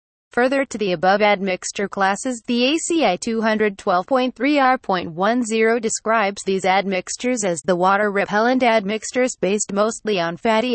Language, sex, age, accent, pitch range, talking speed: English, female, 30-49, American, 185-240 Hz, 105 wpm